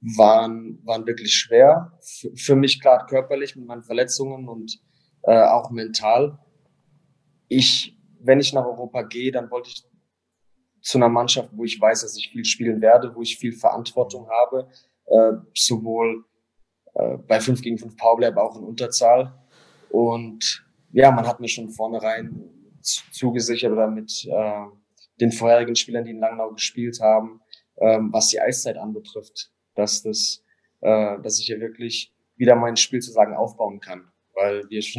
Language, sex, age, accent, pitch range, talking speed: German, male, 20-39, German, 110-125 Hz, 160 wpm